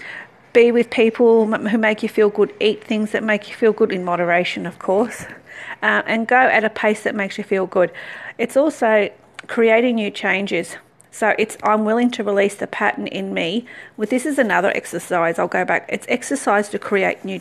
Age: 40-59